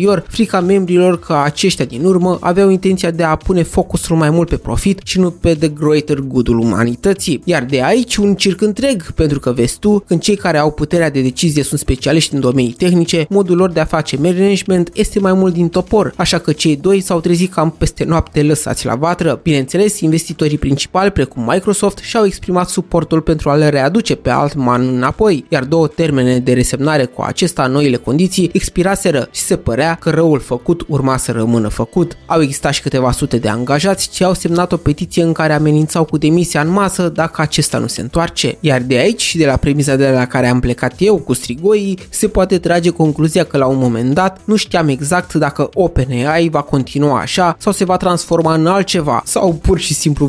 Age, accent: 20-39, native